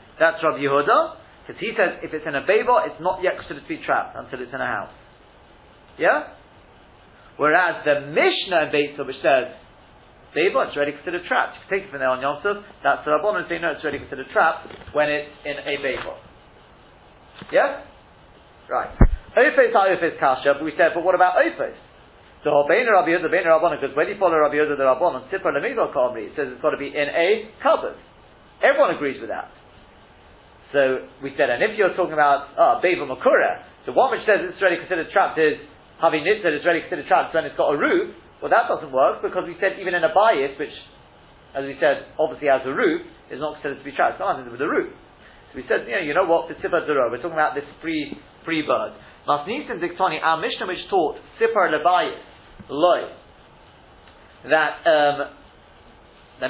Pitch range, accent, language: 145-185 Hz, British, English